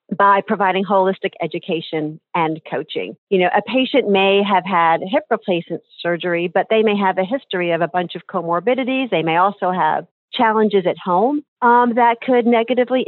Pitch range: 165-225 Hz